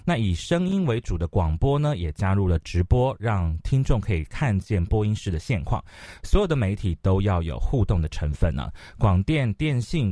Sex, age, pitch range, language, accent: male, 30-49, 85-110 Hz, Chinese, native